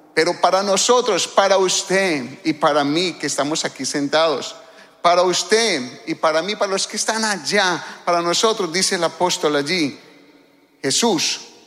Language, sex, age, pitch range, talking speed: English, male, 40-59, 180-255 Hz, 150 wpm